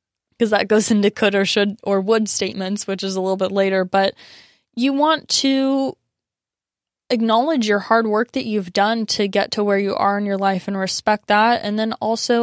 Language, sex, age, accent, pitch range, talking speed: English, female, 20-39, American, 185-210 Hz, 205 wpm